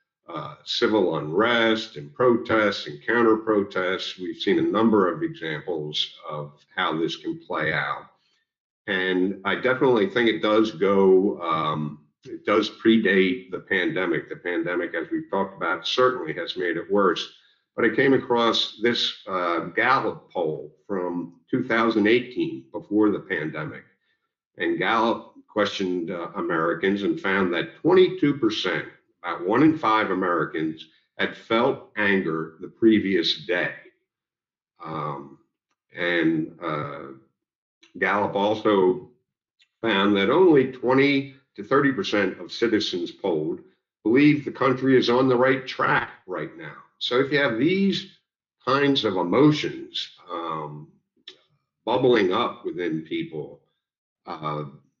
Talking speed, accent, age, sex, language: 125 wpm, American, 50-69, male, English